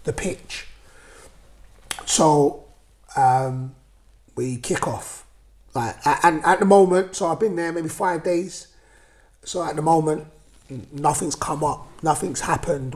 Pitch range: 120-145 Hz